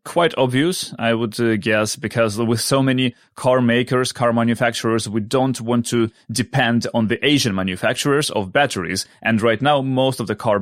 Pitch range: 110-130 Hz